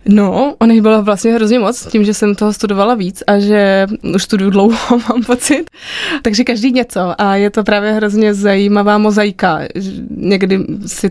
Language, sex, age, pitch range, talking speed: Czech, female, 20-39, 190-215 Hz, 160 wpm